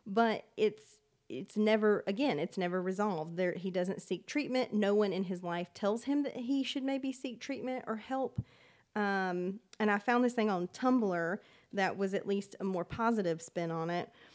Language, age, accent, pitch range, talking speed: English, 30-49, American, 180-210 Hz, 190 wpm